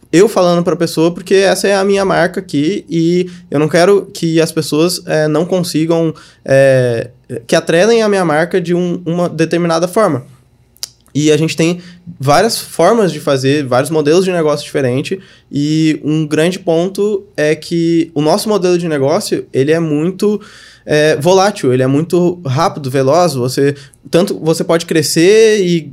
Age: 20-39